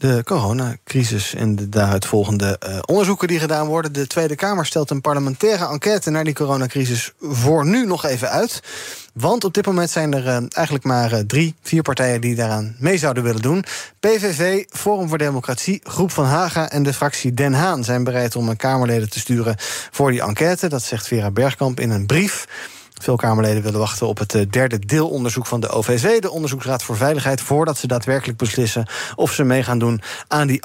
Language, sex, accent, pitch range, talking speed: Dutch, male, Dutch, 125-170 Hz, 195 wpm